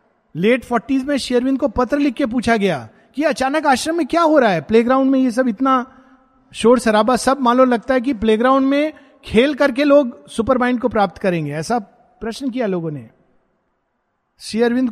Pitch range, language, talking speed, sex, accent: 180-235 Hz, Hindi, 180 wpm, male, native